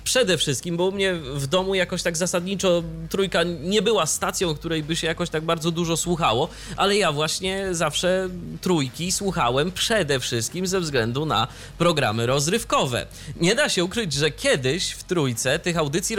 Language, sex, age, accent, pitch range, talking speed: Polish, male, 20-39, native, 125-170 Hz, 165 wpm